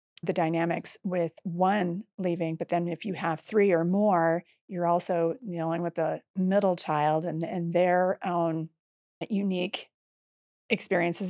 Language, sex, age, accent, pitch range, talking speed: English, female, 30-49, American, 170-205 Hz, 140 wpm